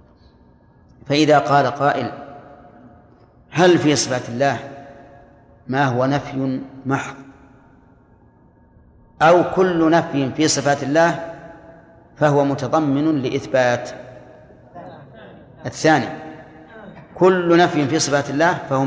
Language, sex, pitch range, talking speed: Arabic, male, 125-155 Hz, 85 wpm